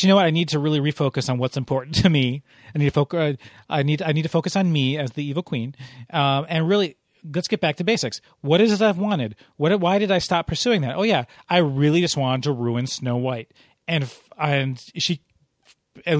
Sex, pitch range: male, 130-165 Hz